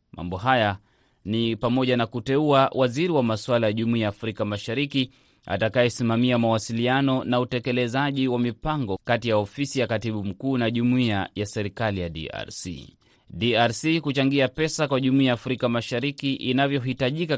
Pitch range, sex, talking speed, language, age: 115-135 Hz, male, 135 wpm, Swahili, 30-49